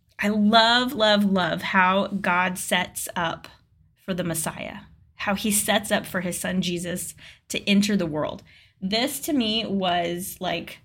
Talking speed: 155 wpm